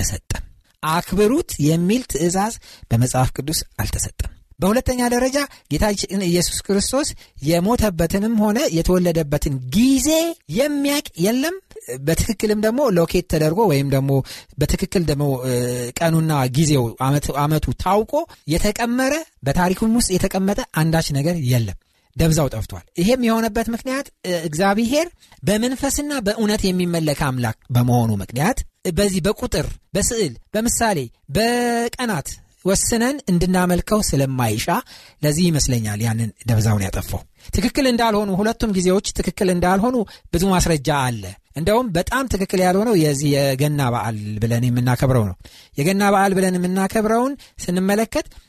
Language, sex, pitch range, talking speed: Amharic, male, 135-220 Hz, 105 wpm